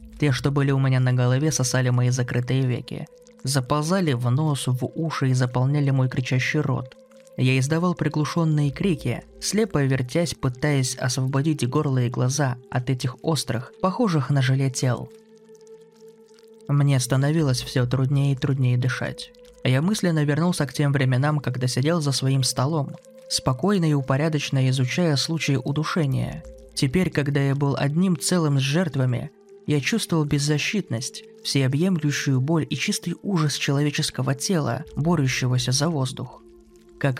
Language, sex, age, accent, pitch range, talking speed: Russian, male, 20-39, native, 130-165 Hz, 135 wpm